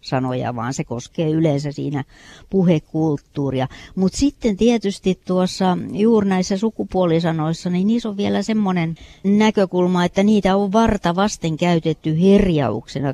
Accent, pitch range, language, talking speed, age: native, 155-195 Hz, Finnish, 125 wpm, 60-79